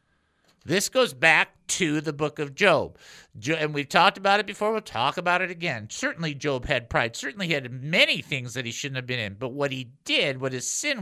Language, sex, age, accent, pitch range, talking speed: English, male, 50-69, American, 125-190 Hz, 225 wpm